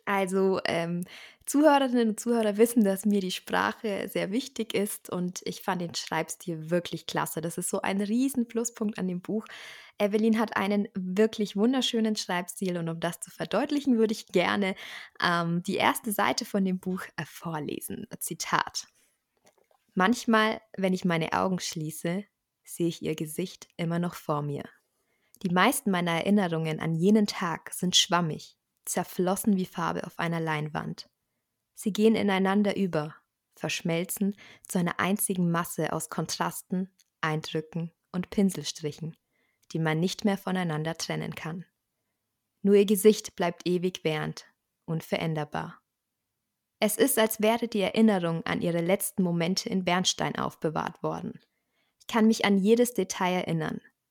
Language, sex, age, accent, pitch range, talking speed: German, female, 20-39, German, 170-210 Hz, 145 wpm